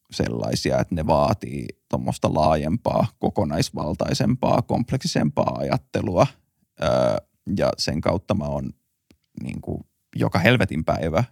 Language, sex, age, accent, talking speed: Finnish, male, 30-49, native, 95 wpm